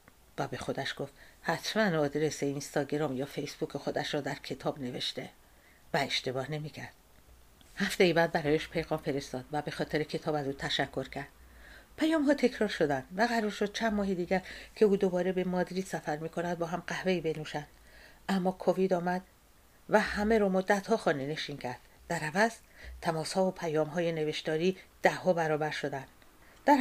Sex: female